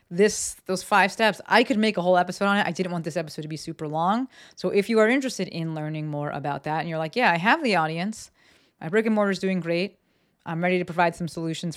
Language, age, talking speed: English, 30-49, 265 wpm